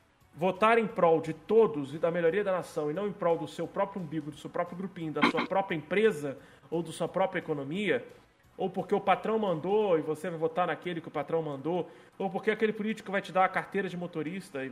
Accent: Brazilian